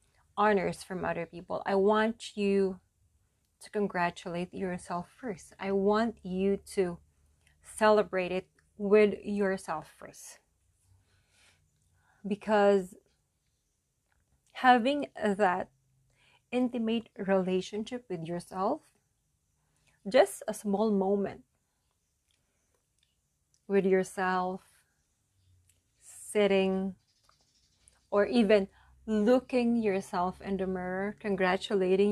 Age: 30-49